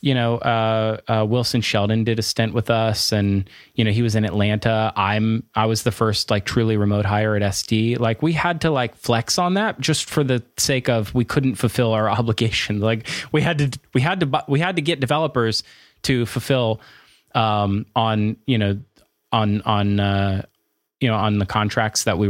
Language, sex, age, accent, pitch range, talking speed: English, male, 20-39, American, 105-125 Hz, 200 wpm